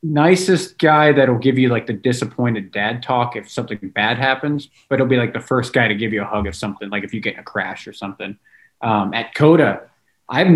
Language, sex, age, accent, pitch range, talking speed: English, male, 20-39, American, 110-150 Hz, 235 wpm